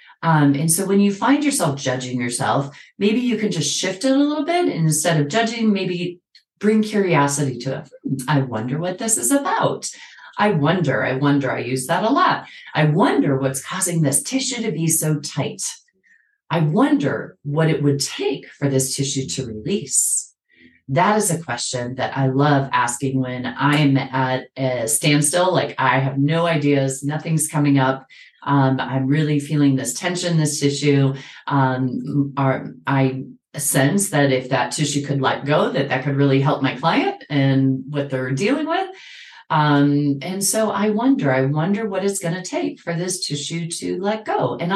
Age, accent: 30-49, American